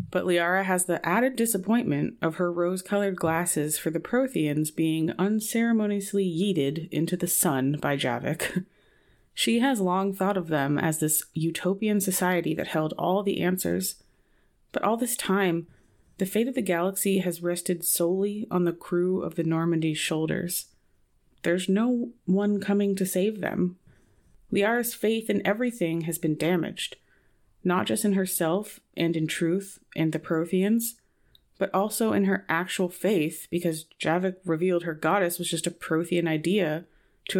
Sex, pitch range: female, 165-195 Hz